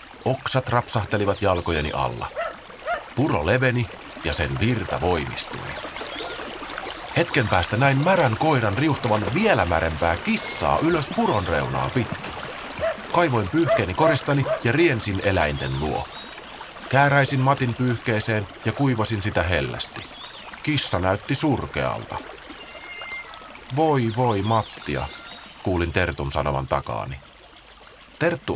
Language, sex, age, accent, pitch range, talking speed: Finnish, male, 30-49, native, 95-135 Hz, 100 wpm